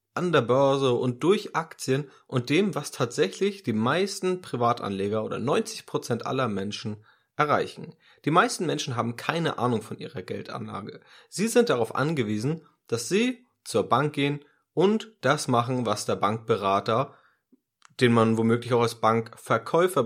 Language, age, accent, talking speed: German, 30-49, German, 145 wpm